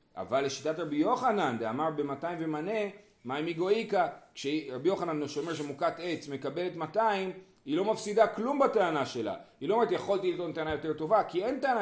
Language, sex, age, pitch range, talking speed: Hebrew, male, 30-49, 120-195 Hz, 175 wpm